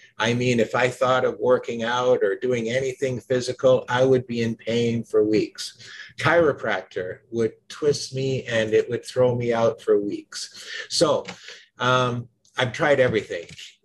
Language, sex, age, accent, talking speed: English, male, 50-69, American, 155 wpm